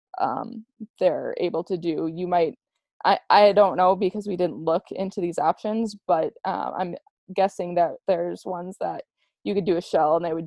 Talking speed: 195 wpm